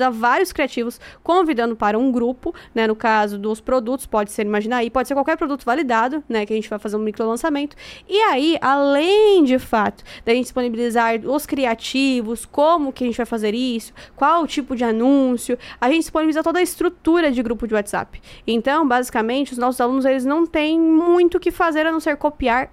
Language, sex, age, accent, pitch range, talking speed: Portuguese, female, 20-39, Brazilian, 245-310 Hz, 205 wpm